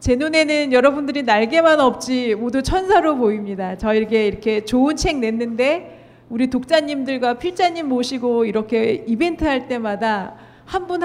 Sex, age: female, 40-59